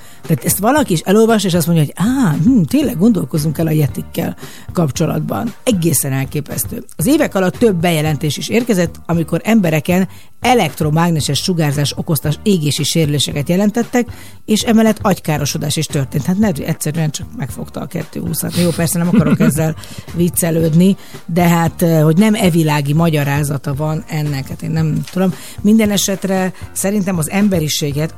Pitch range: 150-185 Hz